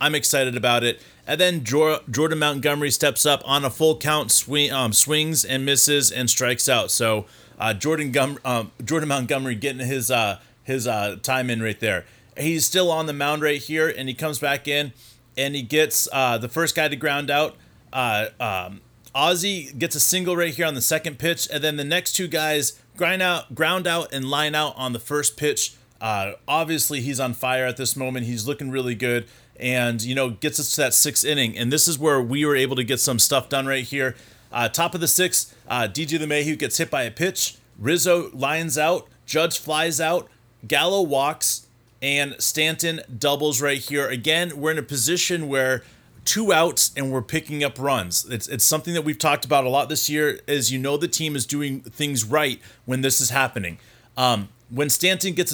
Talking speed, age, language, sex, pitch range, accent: 205 wpm, 30-49, English, male, 125-155 Hz, American